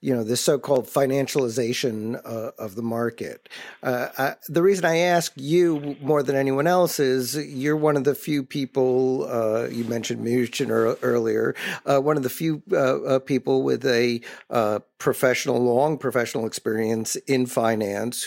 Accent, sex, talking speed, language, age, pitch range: American, male, 150 wpm, English, 50-69, 115-140 Hz